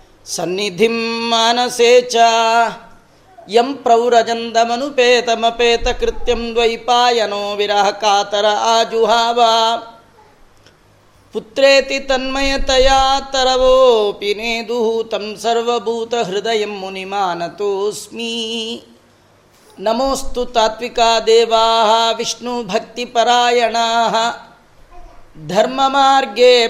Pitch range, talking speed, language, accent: 225-245 Hz, 35 wpm, Kannada, native